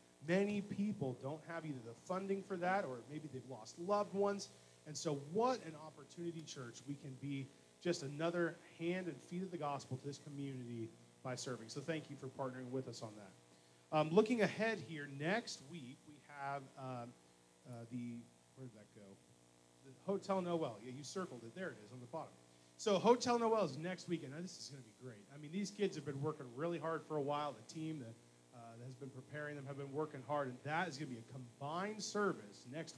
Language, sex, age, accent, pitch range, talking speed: English, male, 30-49, American, 130-170 Hz, 220 wpm